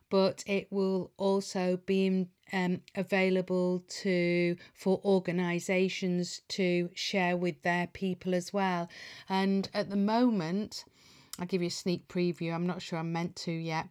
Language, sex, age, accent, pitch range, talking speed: English, female, 40-59, British, 180-195 Hz, 145 wpm